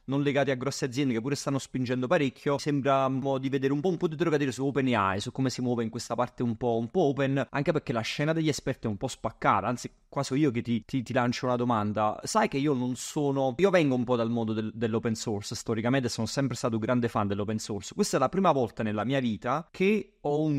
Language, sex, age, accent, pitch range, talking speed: Italian, male, 30-49, native, 115-145 Hz, 260 wpm